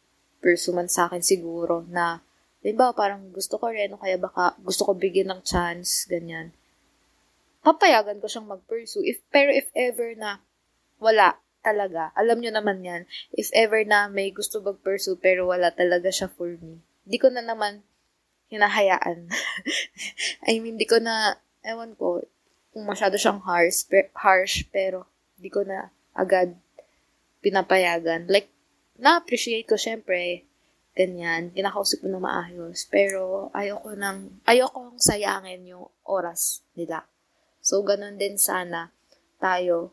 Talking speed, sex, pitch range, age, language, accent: 140 wpm, female, 180-215 Hz, 20-39, Filipino, native